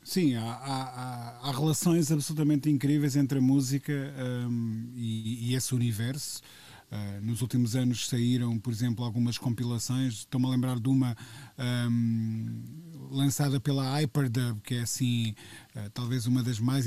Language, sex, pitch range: Portuguese, male, 120-150 Hz